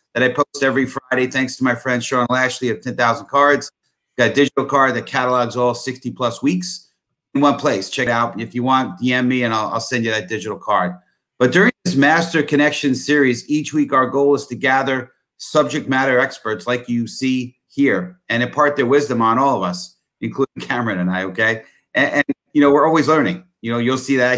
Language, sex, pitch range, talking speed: English, male, 120-140 Hz, 220 wpm